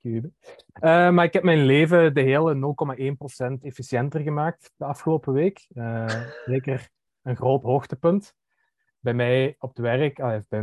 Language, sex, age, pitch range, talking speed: Dutch, male, 20-39, 110-130 Hz, 140 wpm